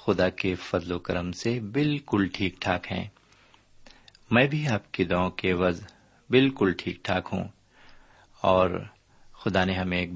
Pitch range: 95-125 Hz